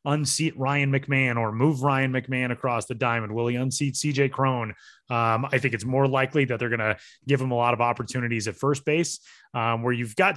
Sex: male